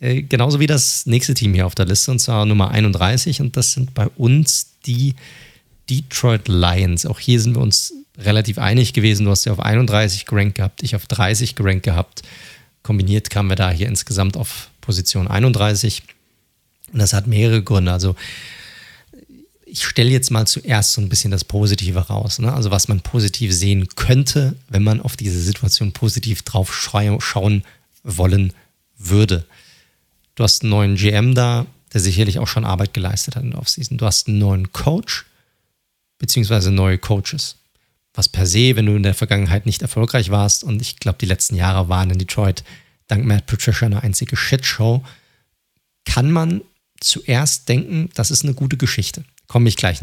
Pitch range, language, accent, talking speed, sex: 100-130 Hz, German, German, 175 wpm, male